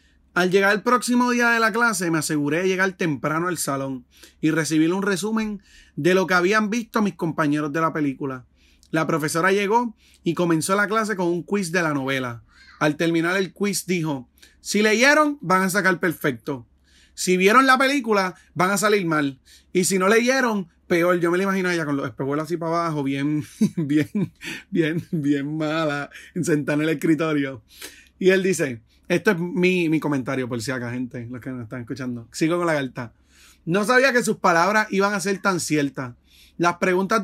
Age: 30-49